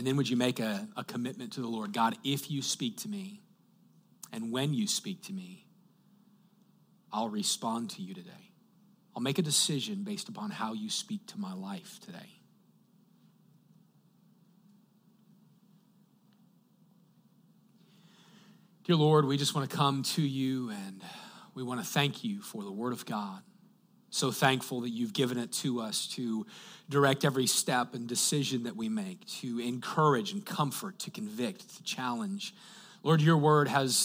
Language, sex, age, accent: English, male, 40-59, American